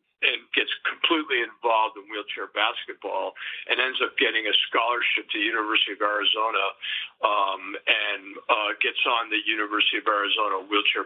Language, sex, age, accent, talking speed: English, male, 50-69, American, 145 wpm